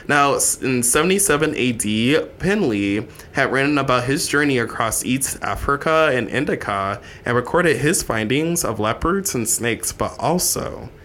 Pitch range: 105-140 Hz